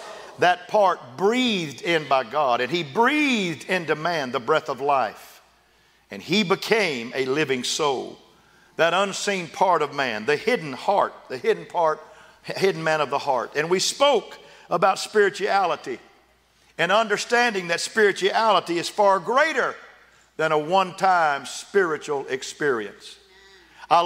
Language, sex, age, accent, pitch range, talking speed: English, male, 50-69, American, 170-225 Hz, 135 wpm